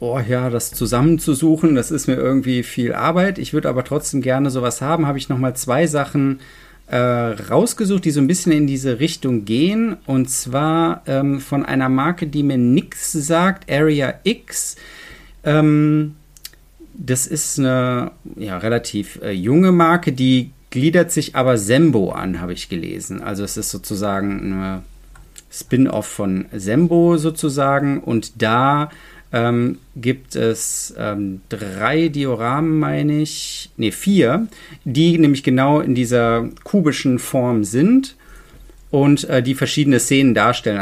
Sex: male